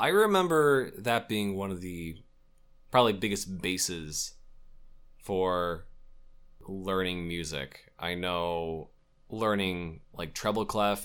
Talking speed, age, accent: 105 wpm, 20-39, American